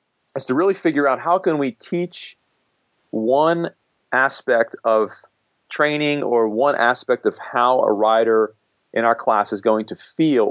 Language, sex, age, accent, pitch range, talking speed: English, male, 40-59, American, 110-140 Hz, 155 wpm